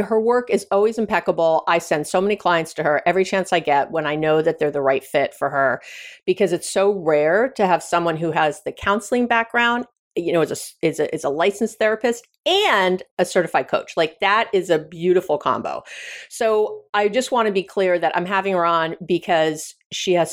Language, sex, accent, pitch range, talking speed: English, female, American, 175-245 Hz, 215 wpm